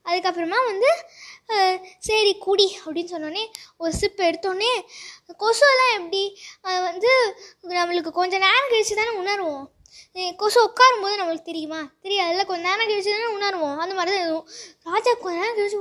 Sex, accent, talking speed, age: female, native, 95 wpm, 20-39